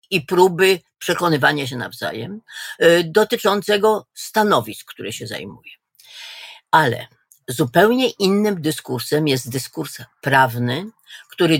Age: 50-69